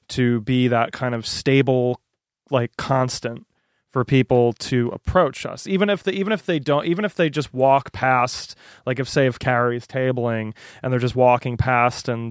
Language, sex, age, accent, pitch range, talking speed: English, male, 30-49, American, 115-130 Hz, 185 wpm